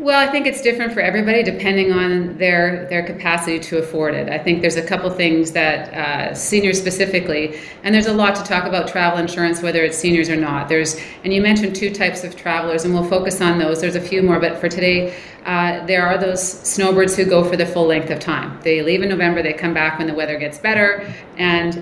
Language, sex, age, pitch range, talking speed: English, female, 40-59, 165-190 Hz, 235 wpm